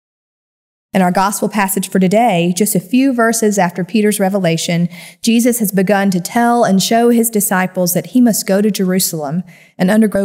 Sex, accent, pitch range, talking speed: female, American, 185-230 Hz, 175 wpm